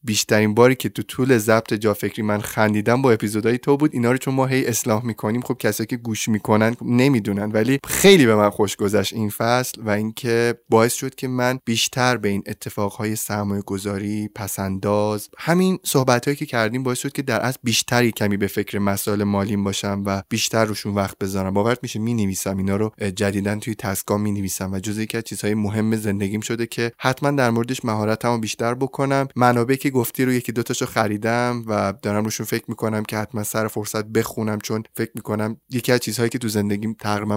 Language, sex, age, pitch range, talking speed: Persian, male, 20-39, 105-125 Hz, 190 wpm